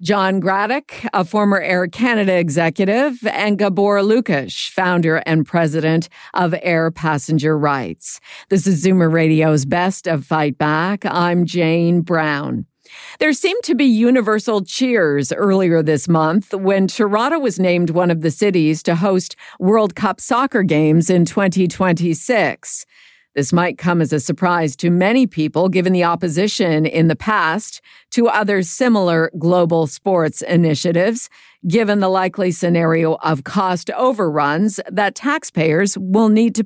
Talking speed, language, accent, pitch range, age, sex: 140 wpm, English, American, 165-210 Hz, 50-69, female